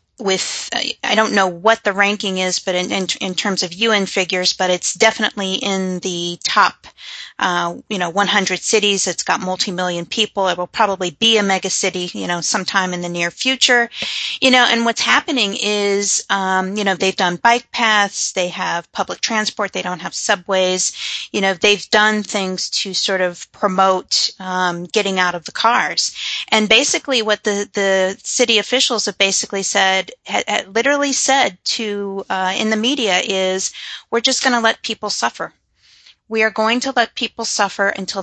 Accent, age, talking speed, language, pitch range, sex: American, 30-49, 180 wpm, English, 185-225 Hz, female